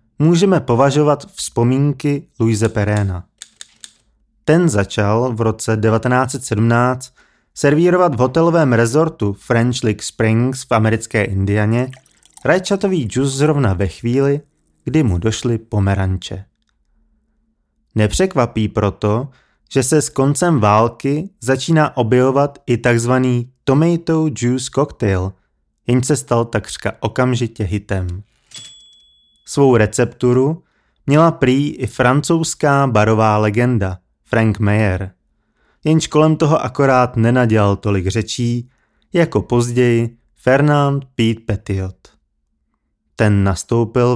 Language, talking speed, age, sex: Czech, 100 wpm, 30-49, male